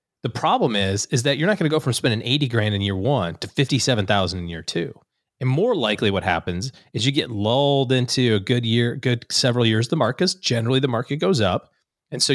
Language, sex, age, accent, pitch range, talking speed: English, male, 30-49, American, 105-140 Hz, 235 wpm